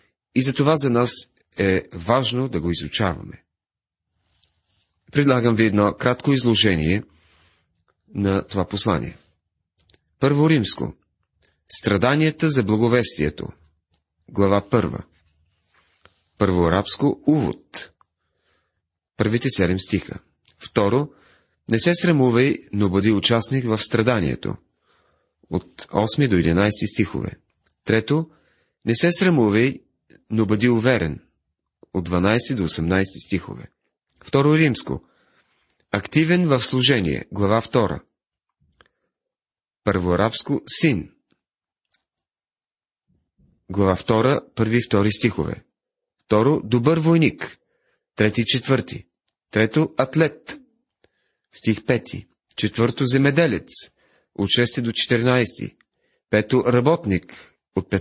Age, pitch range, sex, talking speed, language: 40-59, 95-130 Hz, male, 95 wpm, Bulgarian